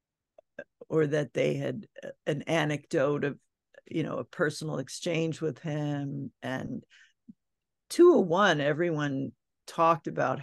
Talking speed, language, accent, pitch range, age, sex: 110 wpm, English, American, 145-180 Hz, 50-69, female